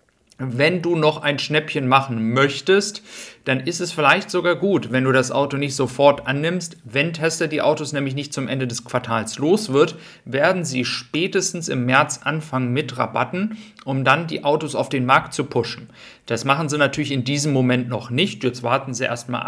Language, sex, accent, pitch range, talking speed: German, male, German, 125-155 Hz, 190 wpm